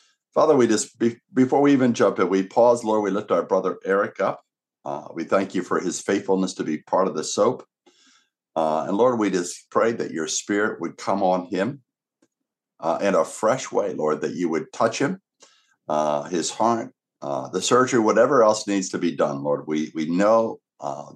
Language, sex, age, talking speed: English, male, 60-79, 200 wpm